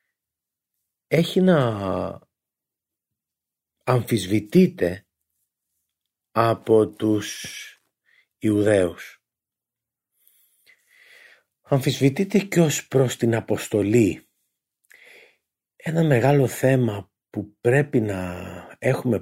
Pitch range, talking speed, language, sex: 95-130 Hz, 60 wpm, Greek, male